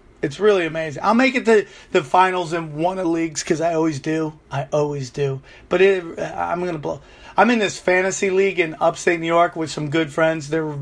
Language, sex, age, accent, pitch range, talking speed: English, male, 30-49, American, 155-185 Hz, 220 wpm